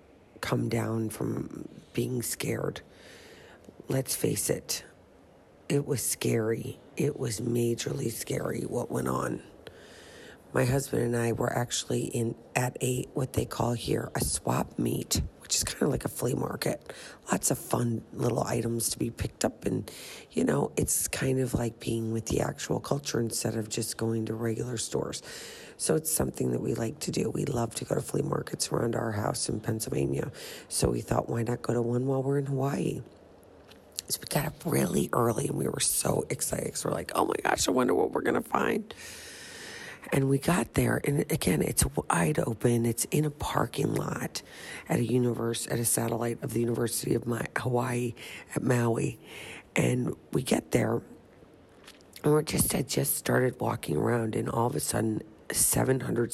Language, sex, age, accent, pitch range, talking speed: English, female, 40-59, American, 115-125 Hz, 180 wpm